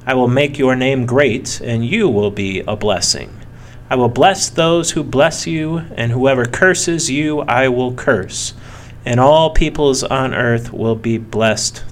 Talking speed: 170 wpm